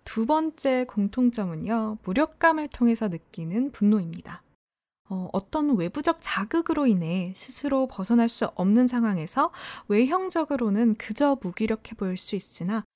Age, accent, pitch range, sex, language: 20-39, native, 190-260 Hz, female, Korean